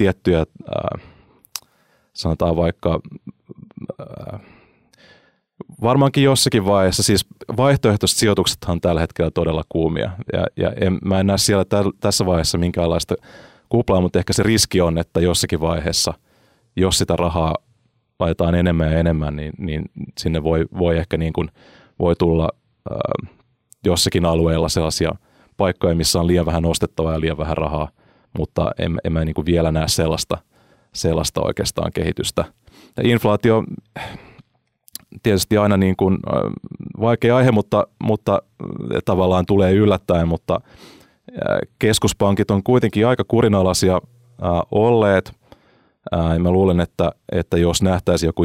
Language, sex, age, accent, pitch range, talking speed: Finnish, male, 30-49, native, 85-105 Hz, 135 wpm